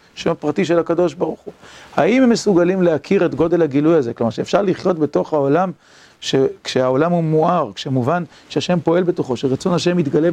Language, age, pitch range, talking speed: Hebrew, 40-59, 135-175 Hz, 175 wpm